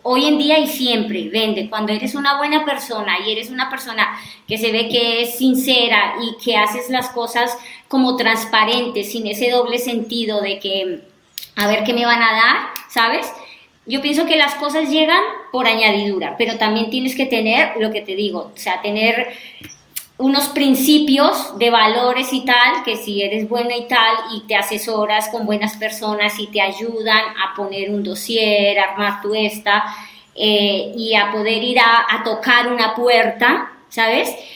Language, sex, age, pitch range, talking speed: Spanish, male, 20-39, 215-260 Hz, 175 wpm